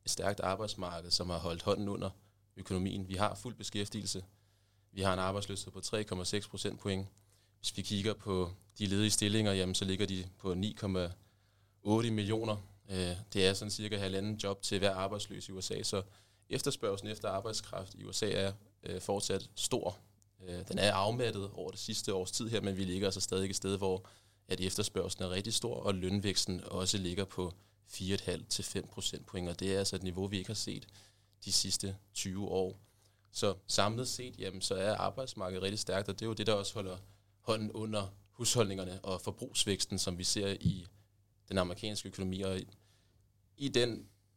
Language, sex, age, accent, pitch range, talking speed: Danish, male, 20-39, native, 95-105 Hz, 175 wpm